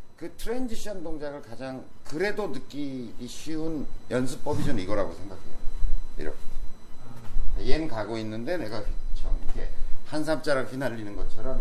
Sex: male